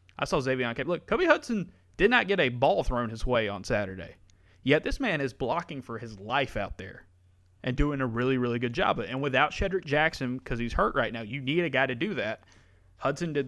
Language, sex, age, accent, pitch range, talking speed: English, male, 30-49, American, 95-135 Hz, 235 wpm